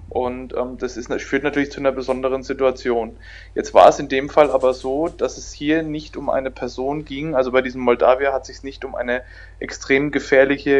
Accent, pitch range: German, 120-135 Hz